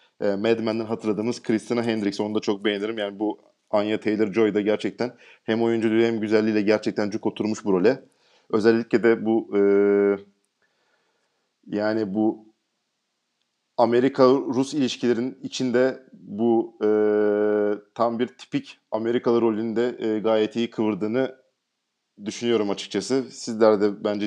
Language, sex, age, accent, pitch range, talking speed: Turkish, male, 40-59, native, 105-130 Hz, 115 wpm